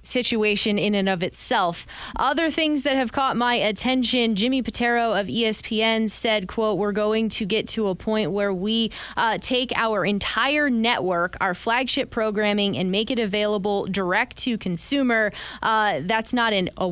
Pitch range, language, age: 195-235 Hz, English, 20-39